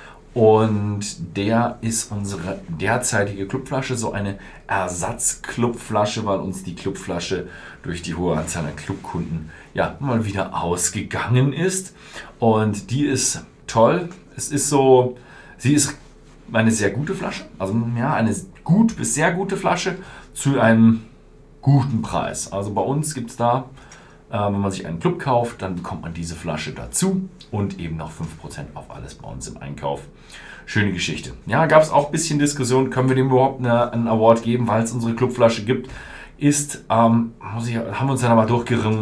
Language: German